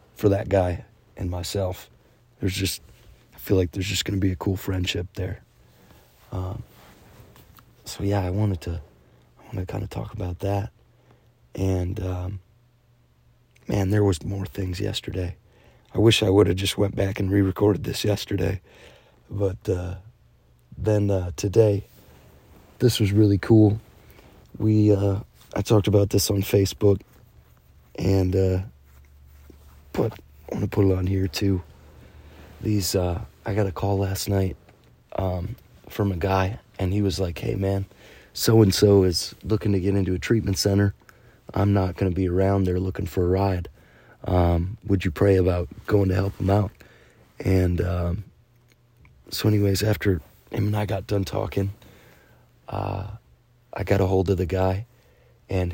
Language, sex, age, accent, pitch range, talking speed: English, male, 30-49, American, 95-105 Hz, 160 wpm